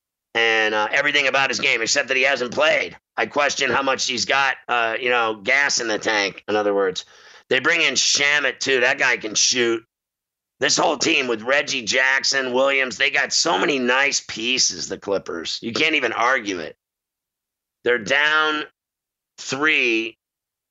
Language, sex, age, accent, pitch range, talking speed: English, male, 50-69, American, 120-145 Hz, 170 wpm